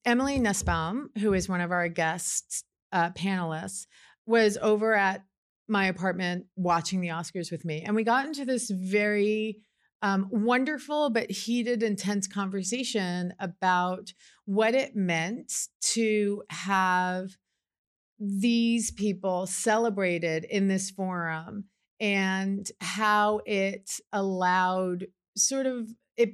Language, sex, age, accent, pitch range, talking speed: English, female, 40-59, American, 180-225 Hz, 115 wpm